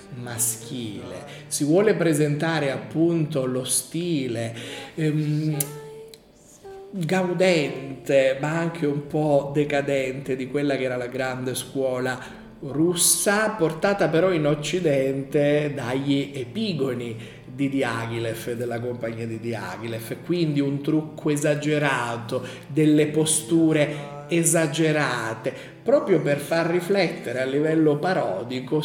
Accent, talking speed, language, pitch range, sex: native, 100 wpm, Italian, 130-165 Hz, male